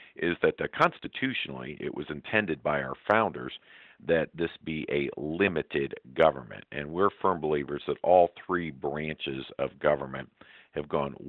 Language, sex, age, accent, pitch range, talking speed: English, male, 50-69, American, 70-80 Hz, 150 wpm